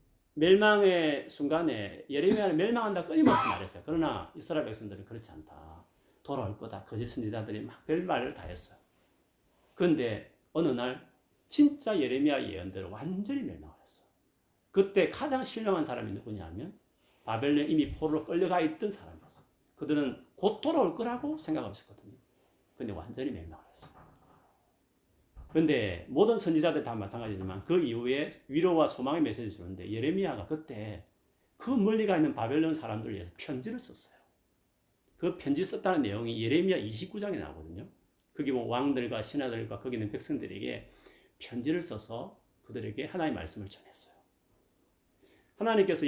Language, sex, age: Korean, male, 40-59